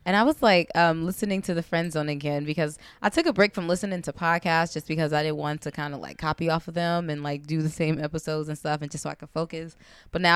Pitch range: 155-185 Hz